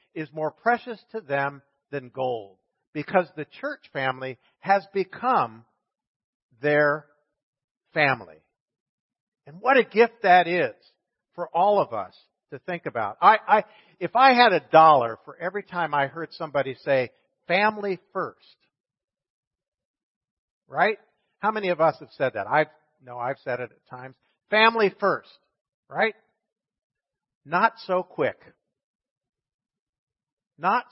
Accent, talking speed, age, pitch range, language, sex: American, 130 wpm, 50-69, 150-215 Hz, English, male